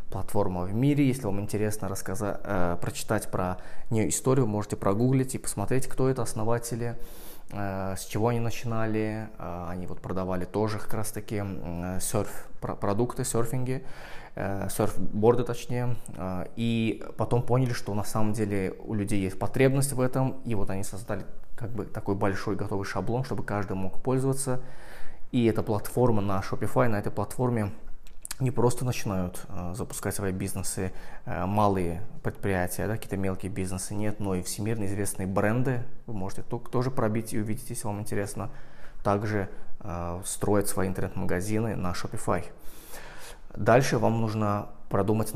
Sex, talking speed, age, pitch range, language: male, 145 wpm, 20-39, 95-115 Hz, Russian